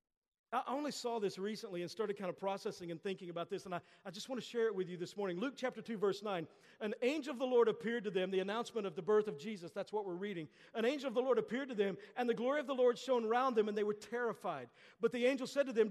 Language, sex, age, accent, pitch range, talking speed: English, male, 50-69, American, 210-270 Hz, 290 wpm